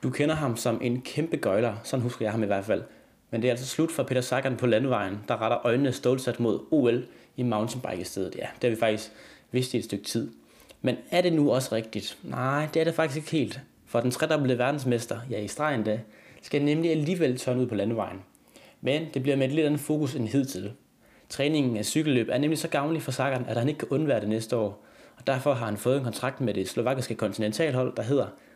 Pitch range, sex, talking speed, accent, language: 110-145 Hz, male, 230 wpm, native, Danish